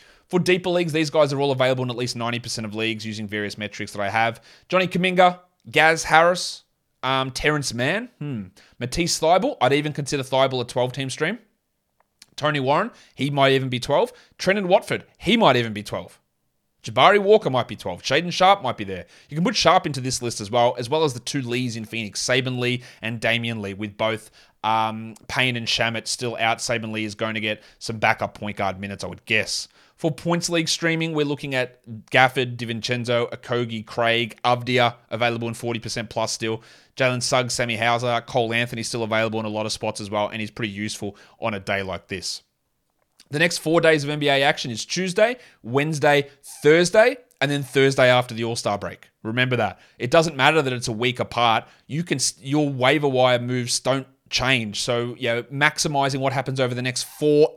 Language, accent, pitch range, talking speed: English, Australian, 115-150 Hz, 200 wpm